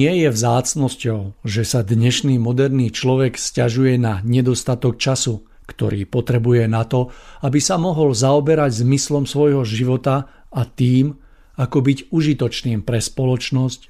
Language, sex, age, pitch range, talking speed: Slovak, male, 50-69, 120-135 Hz, 130 wpm